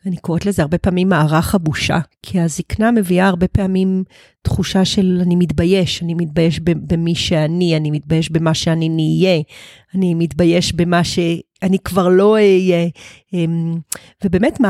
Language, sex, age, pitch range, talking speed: Hebrew, female, 40-59, 170-200 Hz, 135 wpm